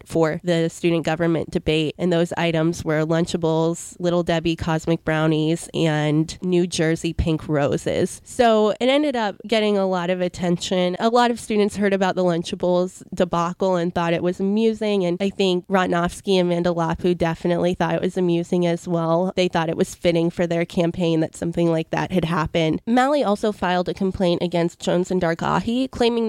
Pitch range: 170-195 Hz